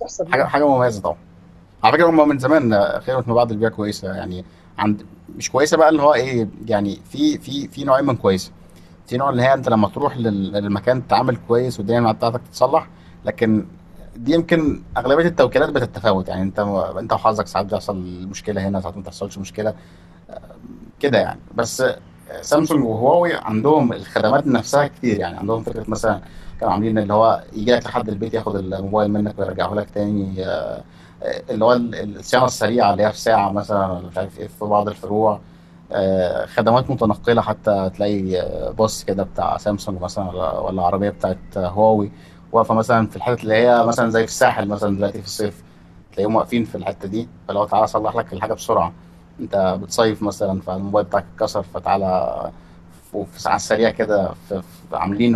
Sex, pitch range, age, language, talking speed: male, 95-115 Hz, 30-49, Arabic, 160 wpm